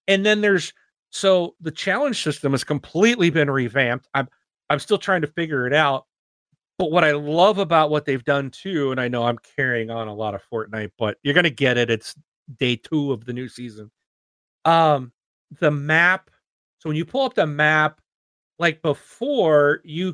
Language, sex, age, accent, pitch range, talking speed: English, male, 40-59, American, 130-170 Hz, 190 wpm